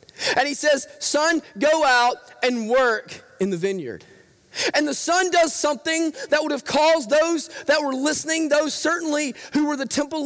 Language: English